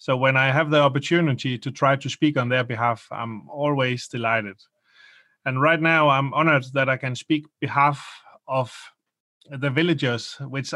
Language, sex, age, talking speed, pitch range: English, male, 30-49, 165 wpm, 125-150 Hz